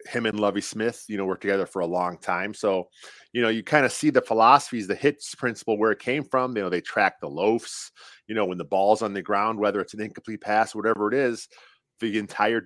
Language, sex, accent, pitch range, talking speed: English, male, American, 100-125 Hz, 245 wpm